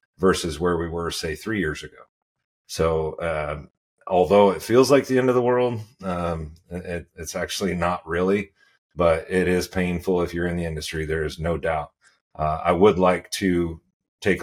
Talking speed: 180 wpm